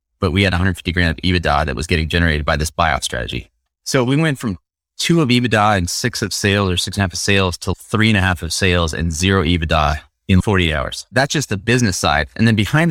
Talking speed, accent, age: 250 wpm, American, 20-39